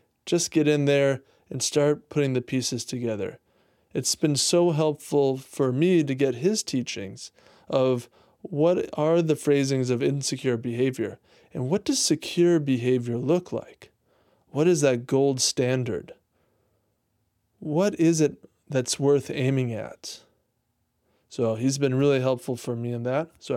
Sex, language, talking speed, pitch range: male, English, 145 wpm, 125-155 Hz